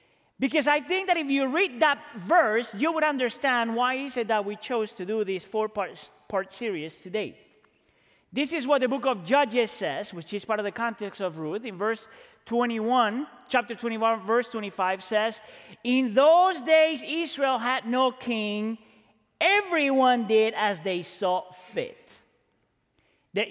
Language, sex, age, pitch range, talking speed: English, male, 40-59, 215-290 Hz, 165 wpm